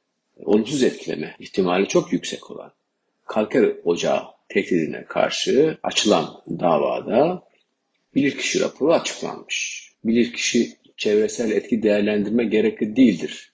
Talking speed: 95 wpm